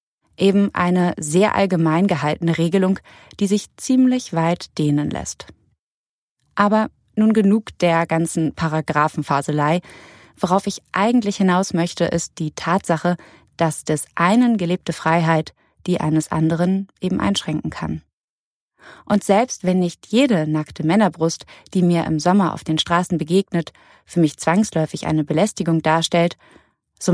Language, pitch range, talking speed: German, 155-190 Hz, 130 wpm